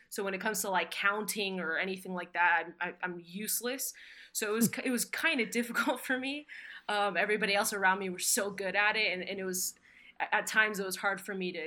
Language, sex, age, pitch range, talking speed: English, female, 20-39, 180-220 Hz, 230 wpm